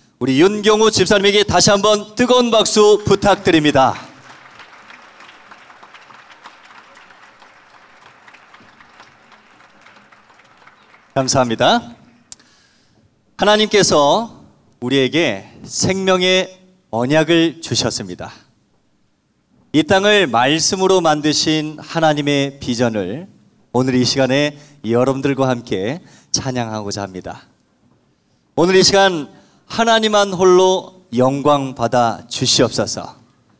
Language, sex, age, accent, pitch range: Korean, male, 40-59, native, 135-185 Hz